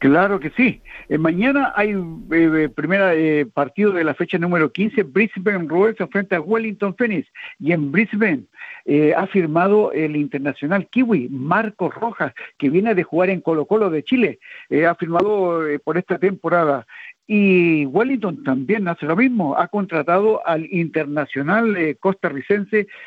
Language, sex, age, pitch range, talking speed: Spanish, male, 60-79, 155-210 Hz, 155 wpm